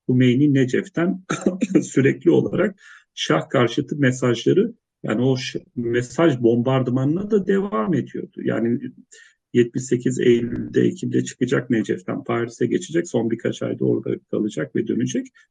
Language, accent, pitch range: English, Turkish, 115-165 Hz